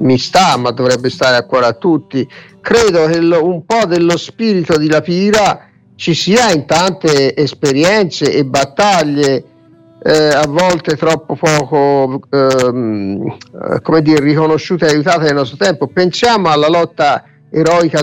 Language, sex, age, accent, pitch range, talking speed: Italian, male, 50-69, native, 140-185 Hz, 140 wpm